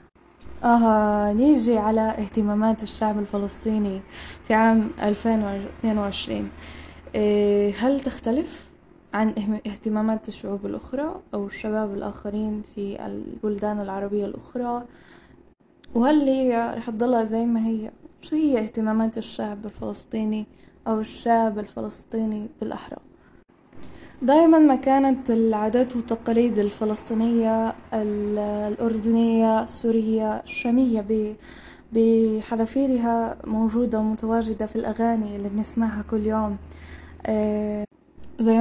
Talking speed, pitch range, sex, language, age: 90 wpm, 210-230 Hz, female, English, 10-29